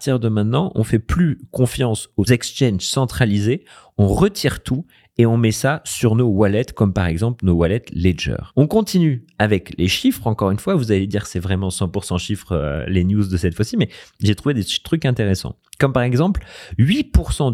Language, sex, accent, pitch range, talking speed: French, male, French, 95-130 Hz, 195 wpm